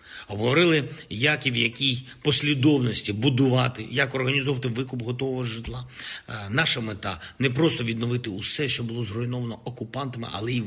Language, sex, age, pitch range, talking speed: Ukrainian, male, 50-69, 100-130 Hz, 140 wpm